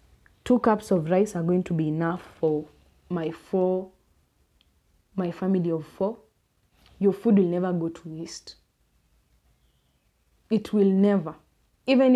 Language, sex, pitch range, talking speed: English, female, 160-210 Hz, 135 wpm